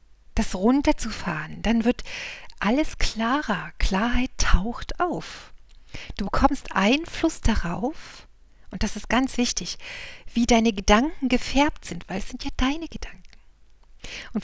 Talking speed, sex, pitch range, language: 125 wpm, female, 190-250 Hz, German